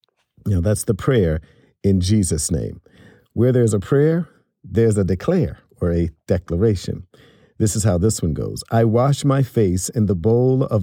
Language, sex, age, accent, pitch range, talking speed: English, male, 50-69, American, 95-125 Hz, 170 wpm